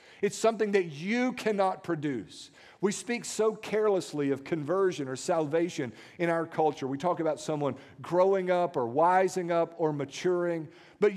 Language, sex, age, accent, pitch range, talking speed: English, male, 50-69, American, 140-235 Hz, 155 wpm